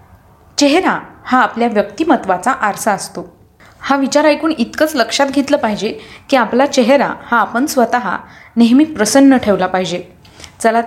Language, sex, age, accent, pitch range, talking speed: Marathi, female, 20-39, native, 210-285 Hz, 135 wpm